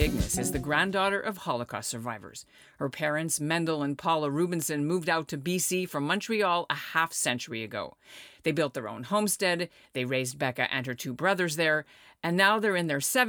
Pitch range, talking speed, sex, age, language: 135-185 Hz, 175 wpm, female, 50-69, English